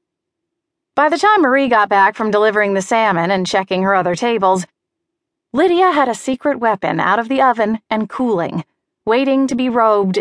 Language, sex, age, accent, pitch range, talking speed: English, female, 30-49, American, 195-320 Hz, 175 wpm